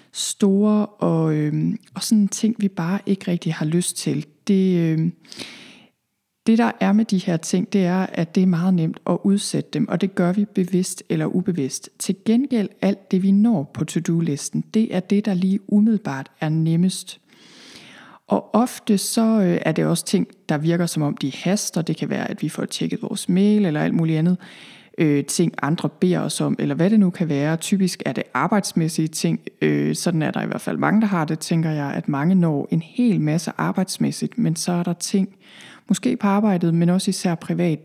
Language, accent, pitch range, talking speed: Danish, native, 165-205 Hz, 205 wpm